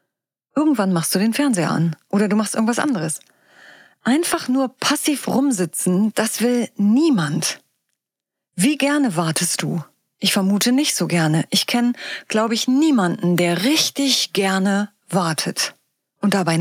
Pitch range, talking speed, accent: 175-255 Hz, 135 wpm, German